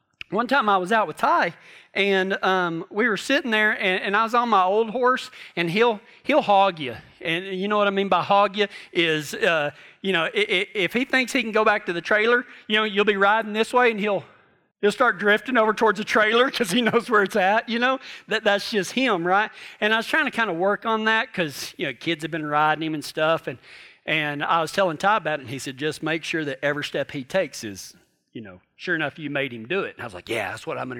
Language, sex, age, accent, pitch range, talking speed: English, male, 40-59, American, 185-285 Hz, 265 wpm